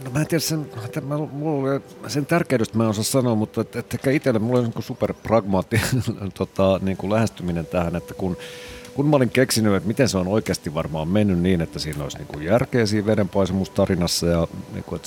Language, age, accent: Finnish, 50-69, native